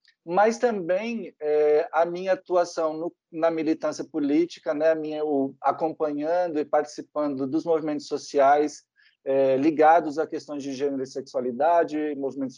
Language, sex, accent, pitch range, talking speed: Portuguese, male, Brazilian, 140-180 Hz, 140 wpm